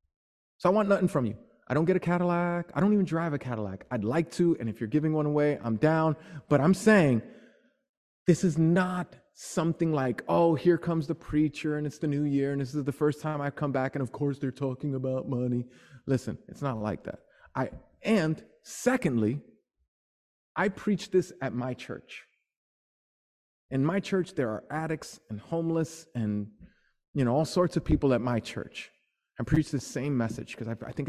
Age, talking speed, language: 30-49, 200 wpm, English